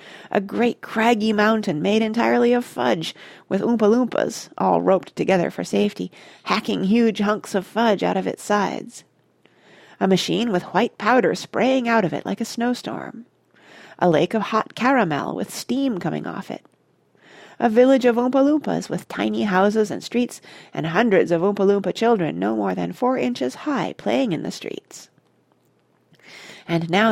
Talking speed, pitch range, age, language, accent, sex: 165 wpm, 180-245 Hz, 40-59, English, American, female